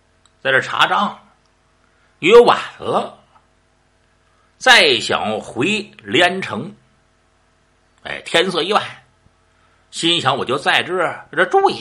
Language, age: Chinese, 60-79